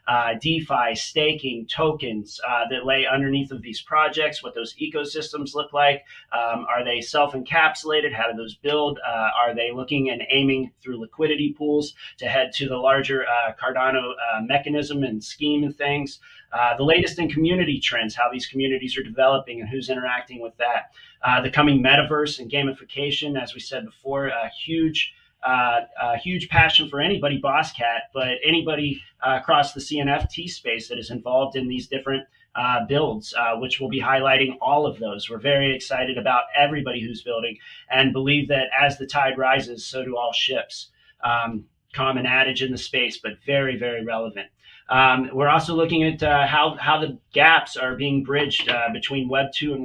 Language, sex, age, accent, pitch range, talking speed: English, male, 30-49, American, 125-145 Hz, 180 wpm